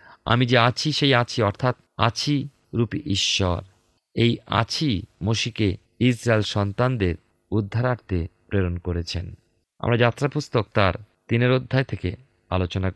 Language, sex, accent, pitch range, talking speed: Bengali, male, native, 100-135 Hz, 95 wpm